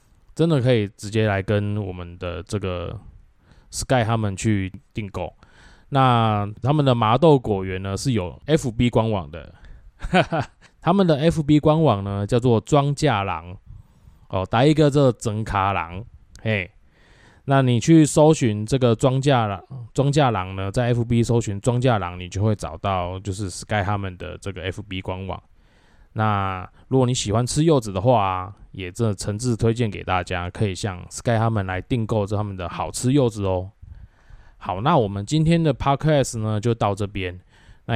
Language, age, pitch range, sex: Chinese, 20-39, 95-125 Hz, male